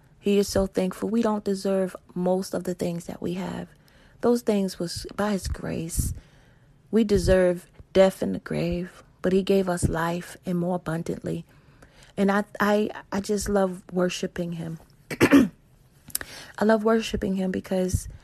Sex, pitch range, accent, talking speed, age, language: female, 180-205 Hz, American, 155 wpm, 30-49, English